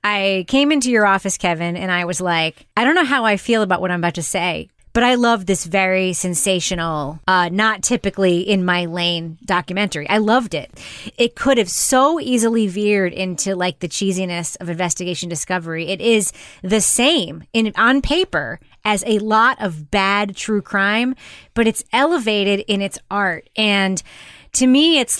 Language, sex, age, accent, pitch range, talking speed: English, female, 20-39, American, 180-225 Hz, 180 wpm